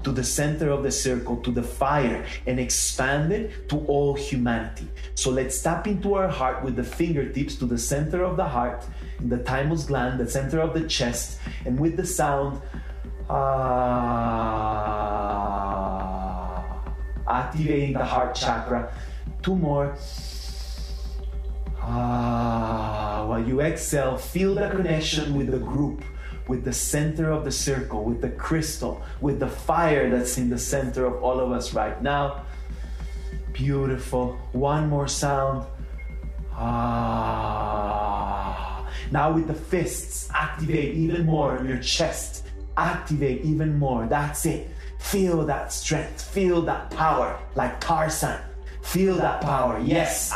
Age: 30-49